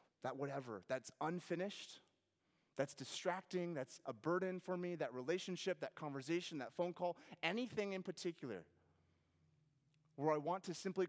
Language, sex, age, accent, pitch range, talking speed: English, male, 30-49, American, 120-175 Hz, 140 wpm